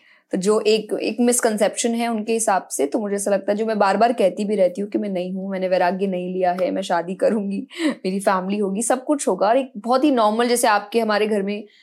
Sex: female